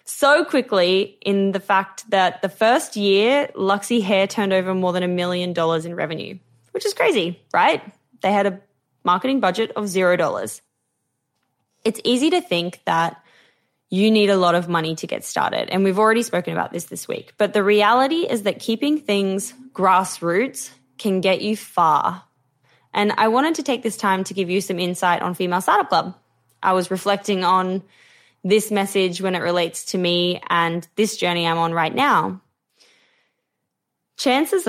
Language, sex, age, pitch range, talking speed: English, female, 10-29, 180-225 Hz, 175 wpm